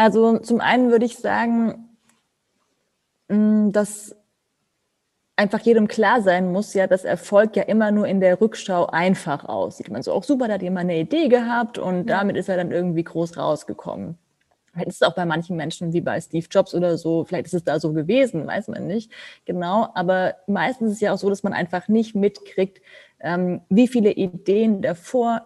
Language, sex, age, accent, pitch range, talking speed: German, female, 20-39, German, 175-220 Hz, 190 wpm